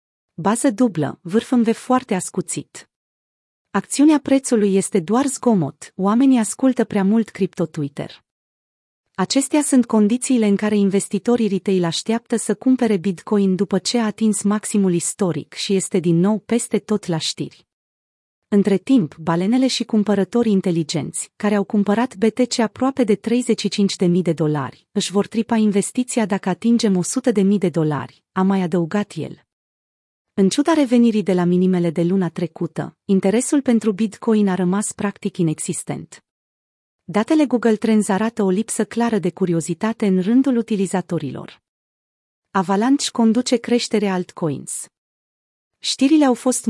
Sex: female